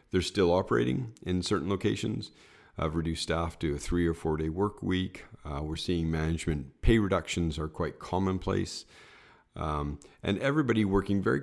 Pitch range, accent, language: 80-95 Hz, American, English